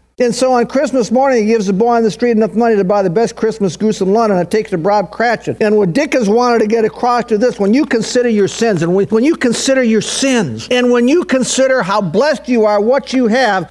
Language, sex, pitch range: English, male, 200-260 Hz